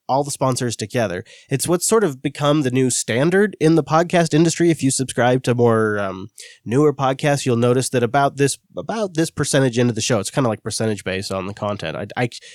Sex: male